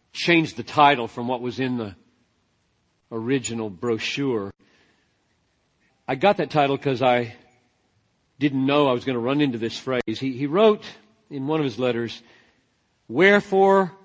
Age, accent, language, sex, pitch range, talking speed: 50-69, American, English, male, 130-200 Hz, 150 wpm